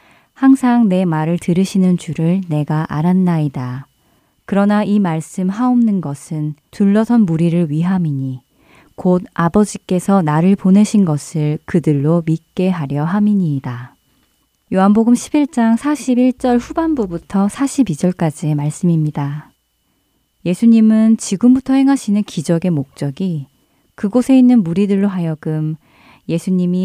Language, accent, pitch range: Korean, native, 160-215 Hz